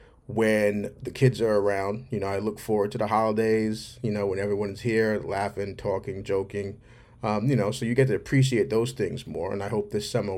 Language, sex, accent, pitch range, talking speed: English, male, American, 110-130 Hz, 215 wpm